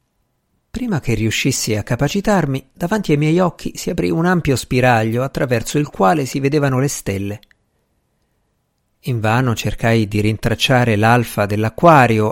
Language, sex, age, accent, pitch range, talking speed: Italian, male, 50-69, native, 110-145 Hz, 135 wpm